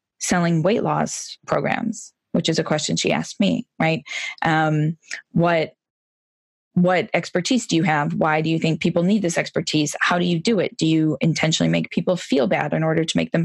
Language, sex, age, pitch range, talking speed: English, female, 20-39, 155-195 Hz, 195 wpm